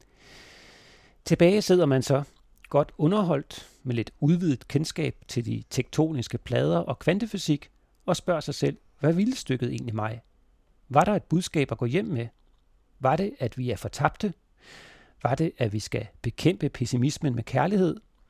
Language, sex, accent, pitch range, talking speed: Danish, male, native, 125-160 Hz, 155 wpm